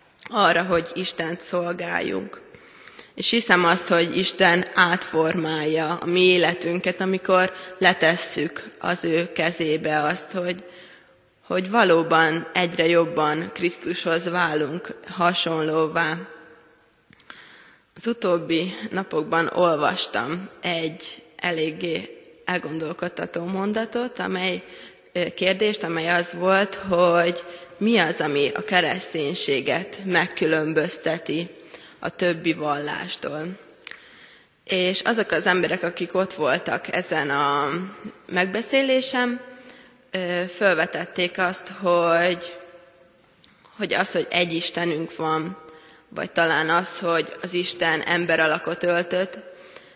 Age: 20-39